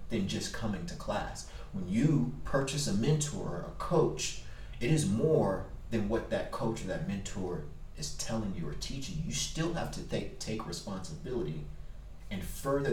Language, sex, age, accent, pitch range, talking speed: English, male, 30-49, American, 80-115 Hz, 170 wpm